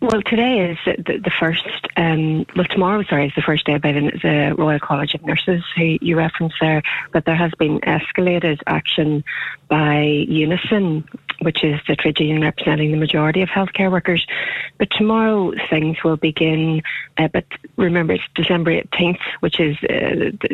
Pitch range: 160-185 Hz